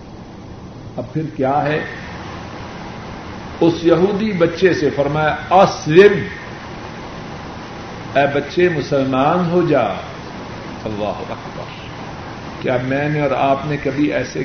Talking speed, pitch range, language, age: 105 wpm, 130-165 Hz, Urdu, 50-69